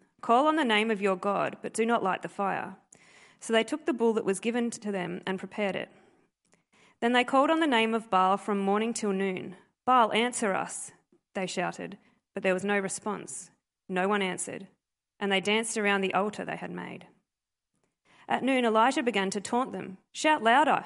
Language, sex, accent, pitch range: English, female, Australian, 195-235 Hz